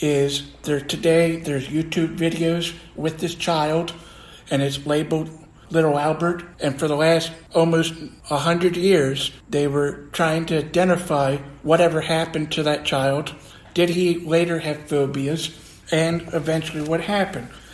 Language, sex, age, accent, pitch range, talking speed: English, male, 60-79, American, 145-165 Hz, 135 wpm